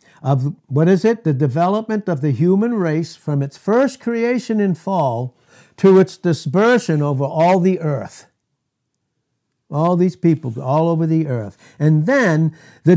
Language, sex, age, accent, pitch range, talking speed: English, male, 60-79, American, 135-170 Hz, 155 wpm